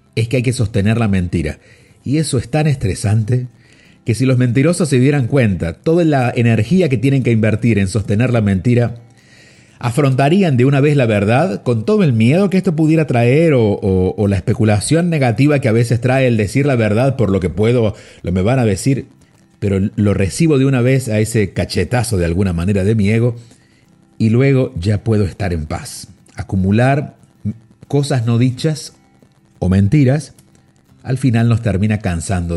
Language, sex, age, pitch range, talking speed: Spanish, male, 50-69, 95-125 Hz, 180 wpm